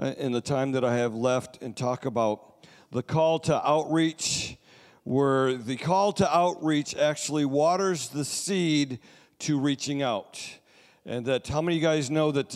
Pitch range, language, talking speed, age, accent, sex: 130-160 Hz, English, 165 wpm, 50-69, American, male